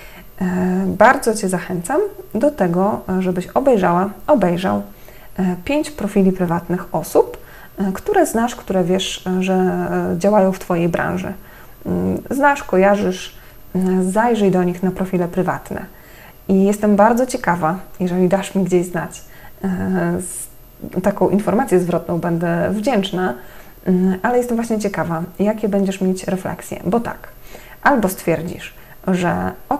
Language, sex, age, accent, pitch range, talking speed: Polish, female, 20-39, native, 175-205 Hz, 115 wpm